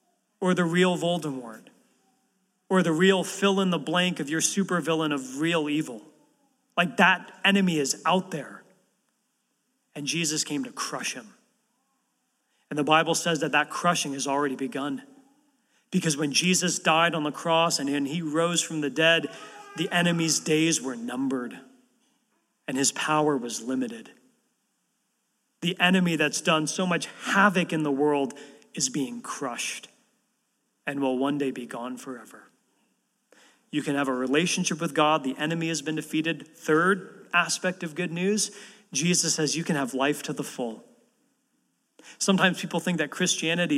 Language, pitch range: English, 150-200 Hz